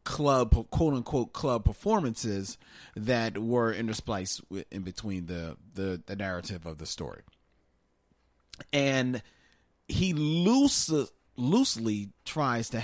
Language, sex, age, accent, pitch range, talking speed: English, male, 40-59, American, 115-145 Hz, 100 wpm